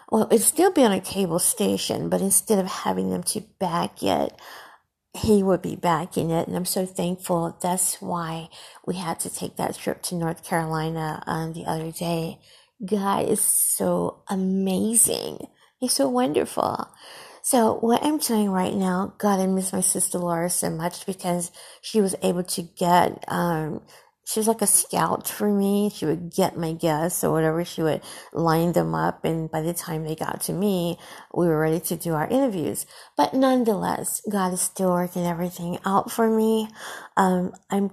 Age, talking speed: 50-69, 180 wpm